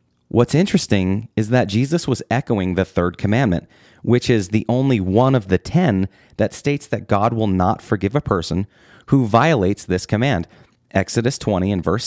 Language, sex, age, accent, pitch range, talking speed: English, male, 30-49, American, 95-125 Hz, 175 wpm